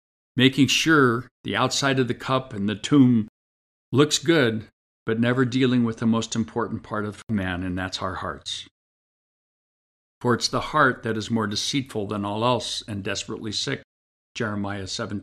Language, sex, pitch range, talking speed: English, male, 95-120 Hz, 160 wpm